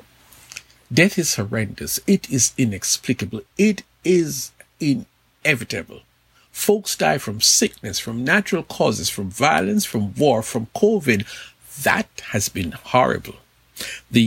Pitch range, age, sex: 105-150 Hz, 60-79, male